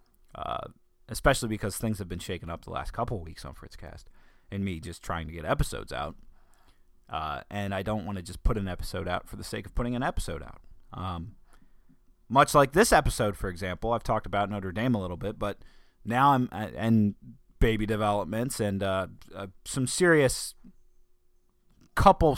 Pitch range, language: 90-120 Hz, English